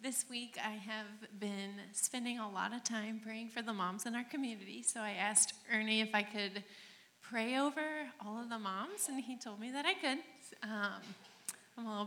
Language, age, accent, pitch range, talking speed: English, 30-49, American, 200-240 Hz, 205 wpm